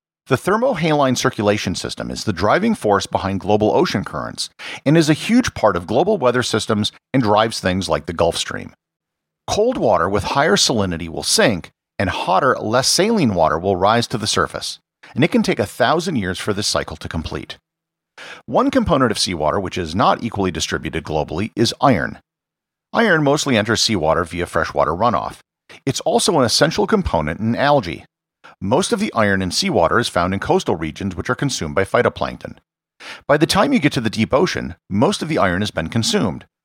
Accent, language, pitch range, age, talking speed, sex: American, English, 90-125 Hz, 50-69, 190 wpm, male